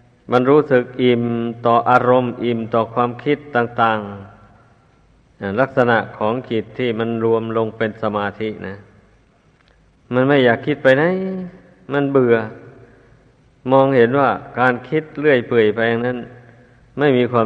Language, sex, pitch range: Thai, male, 110-125 Hz